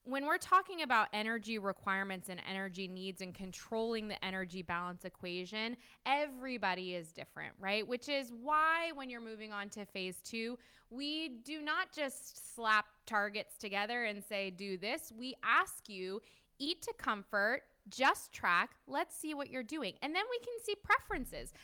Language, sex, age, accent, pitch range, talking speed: English, female, 20-39, American, 195-285 Hz, 165 wpm